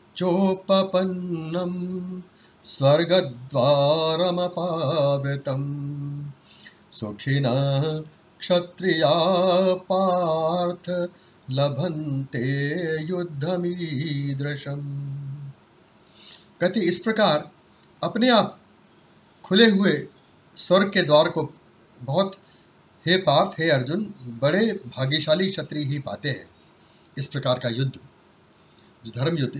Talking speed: 70 wpm